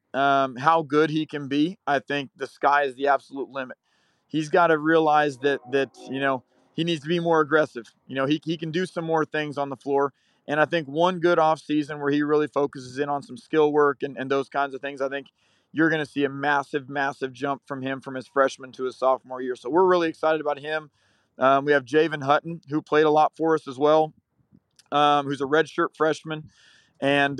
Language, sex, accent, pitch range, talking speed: English, male, American, 135-155 Hz, 230 wpm